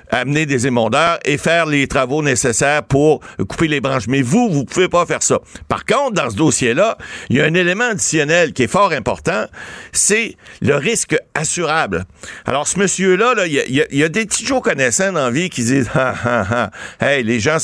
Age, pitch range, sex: 60-79, 130-180 Hz, male